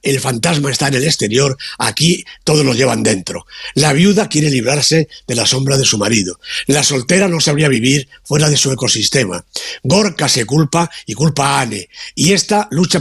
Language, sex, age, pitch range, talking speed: Spanish, male, 60-79, 125-165 Hz, 185 wpm